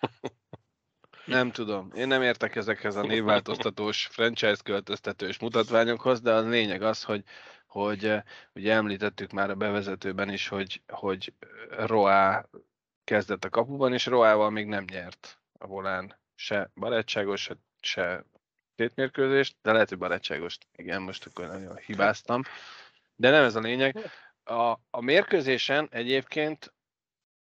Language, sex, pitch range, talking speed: Hungarian, male, 100-130 Hz, 125 wpm